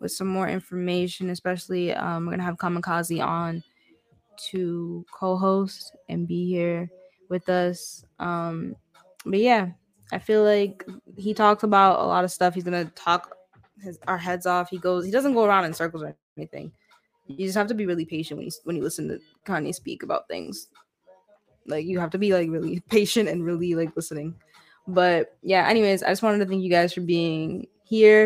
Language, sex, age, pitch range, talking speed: English, female, 10-29, 170-200 Hz, 195 wpm